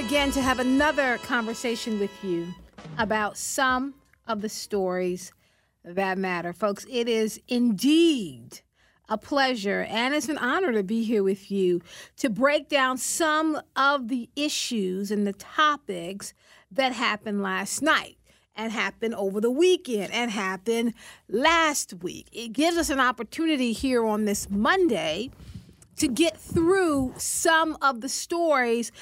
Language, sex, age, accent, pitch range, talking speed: English, female, 50-69, American, 215-280 Hz, 140 wpm